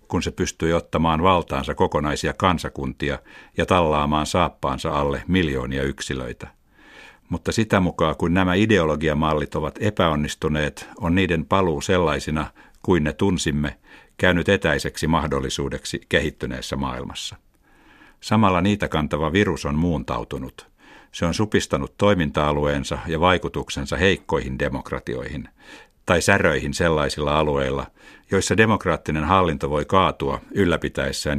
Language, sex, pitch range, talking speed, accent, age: Finnish, male, 75-90 Hz, 110 wpm, native, 60-79